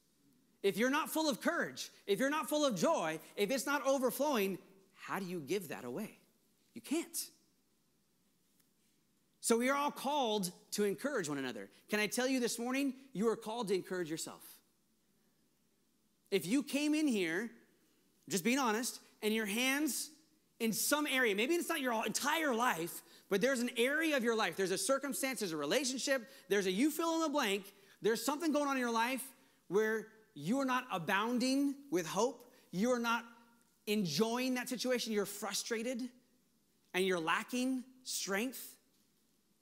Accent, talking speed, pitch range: American, 170 wpm, 215-280 Hz